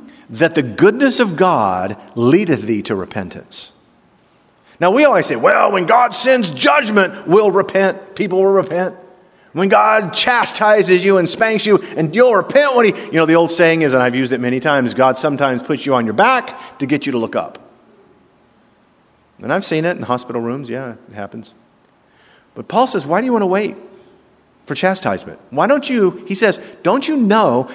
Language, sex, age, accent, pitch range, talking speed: English, male, 50-69, American, 130-210 Hz, 190 wpm